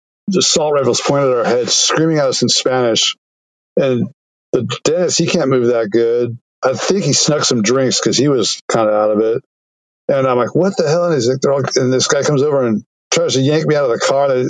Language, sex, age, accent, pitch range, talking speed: English, male, 60-79, American, 125-175 Hz, 230 wpm